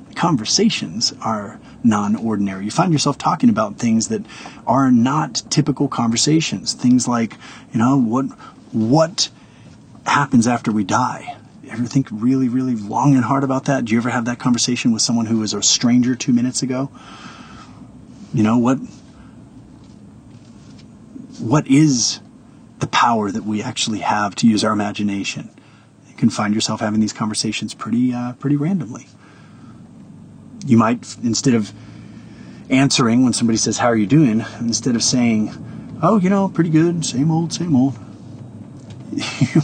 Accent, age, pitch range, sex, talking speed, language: American, 30-49, 110-130 Hz, male, 150 wpm, English